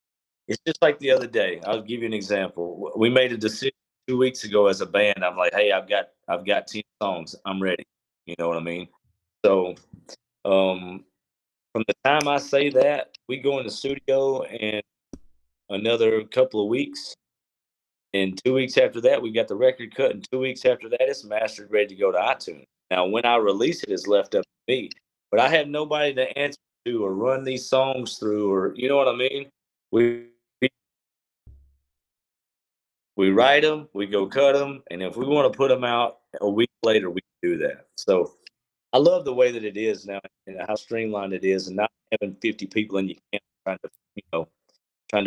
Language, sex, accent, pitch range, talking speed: English, male, American, 95-135 Hz, 210 wpm